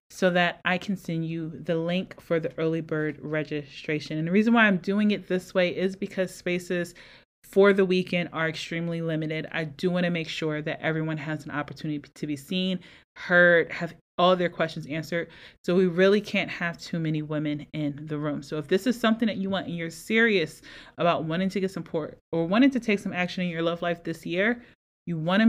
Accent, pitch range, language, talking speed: American, 160-195 Hz, English, 220 wpm